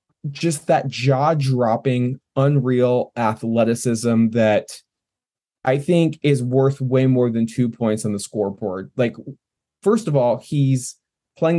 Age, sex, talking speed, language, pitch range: 20-39, male, 130 wpm, English, 120-145 Hz